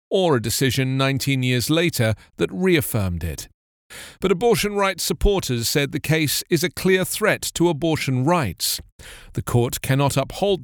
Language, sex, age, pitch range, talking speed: English, male, 40-59, 120-165 Hz, 150 wpm